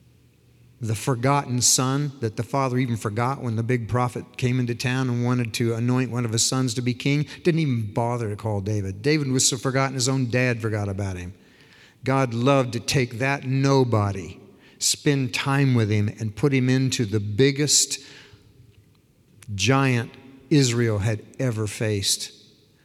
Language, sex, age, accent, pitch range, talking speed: English, male, 50-69, American, 110-135 Hz, 165 wpm